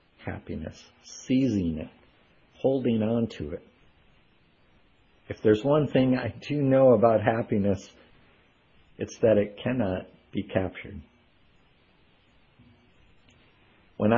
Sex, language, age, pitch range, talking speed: male, English, 50-69, 105-130 Hz, 95 wpm